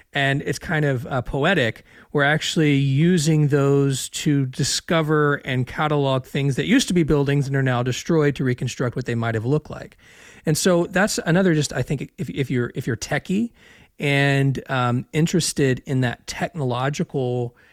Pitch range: 125-155 Hz